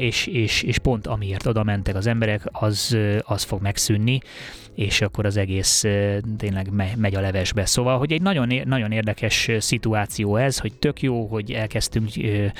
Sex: male